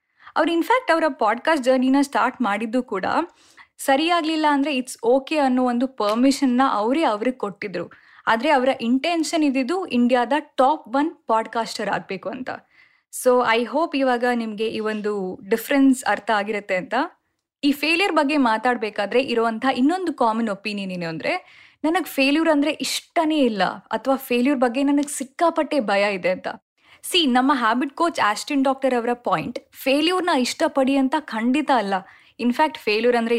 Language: Kannada